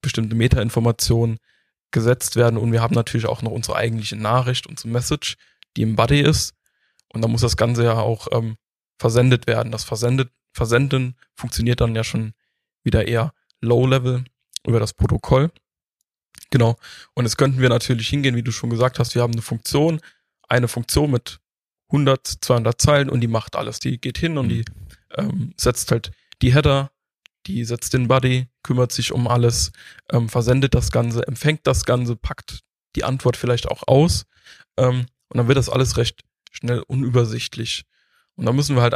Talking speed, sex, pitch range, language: 175 wpm, male, 115-130 Hz, German